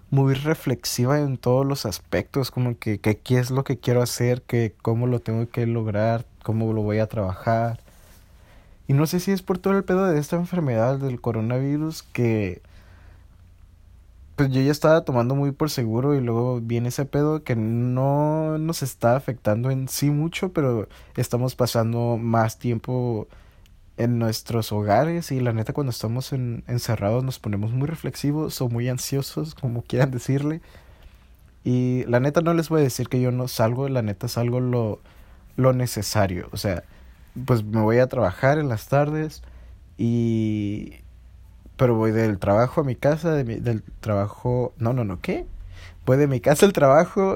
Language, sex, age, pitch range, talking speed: Spanish, male, 20-39, 105-135 Hz, 170 wpm